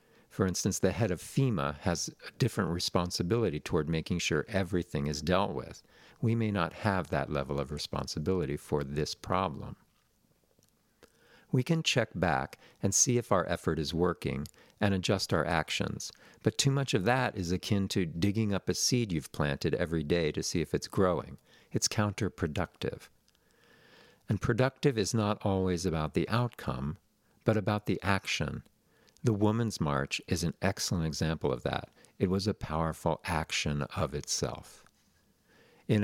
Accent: American